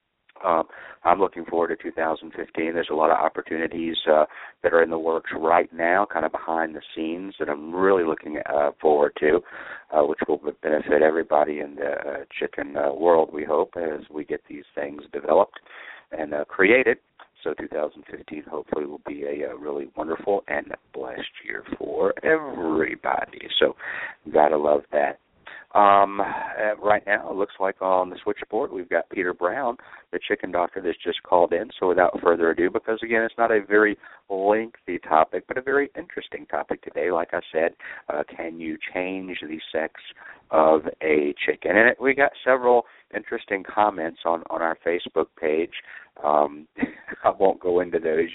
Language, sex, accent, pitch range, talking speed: English, male, American, 80-115 Hz, 175 wpm